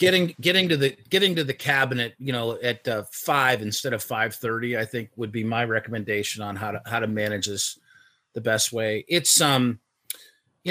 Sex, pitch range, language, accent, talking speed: male, 115-140 Hz, English, American, 195 wpm